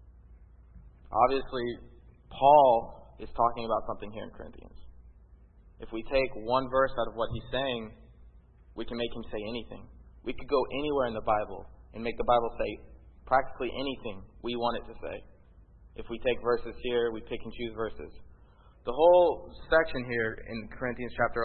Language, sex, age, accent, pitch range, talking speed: English, male, 20-39, American, 90-125 Hz, 170 wpm